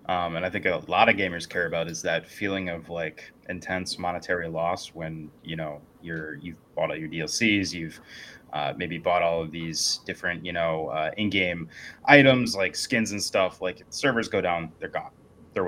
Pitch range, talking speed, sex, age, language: 85-95 Hz, 195 wpm, male, 20-39, English